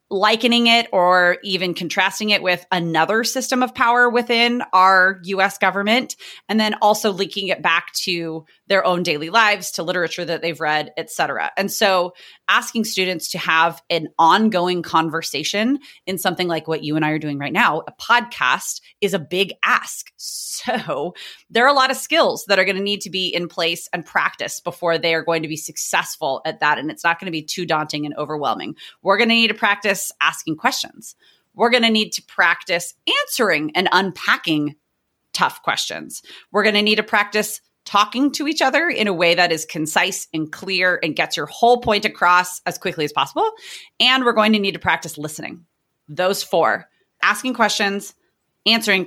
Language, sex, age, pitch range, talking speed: English, female, 30-49, 165-215 Hz, 190 wpm